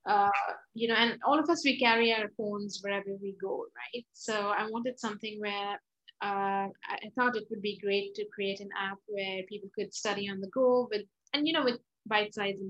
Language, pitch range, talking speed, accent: English, 205-240 Hz, 210 wpm, Indian